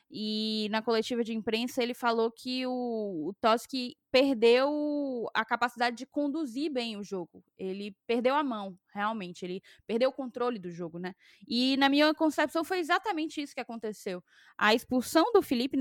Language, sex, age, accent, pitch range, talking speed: Portuguese, female, 10-29, Brazilian, 210-275 Hz, 165 wpm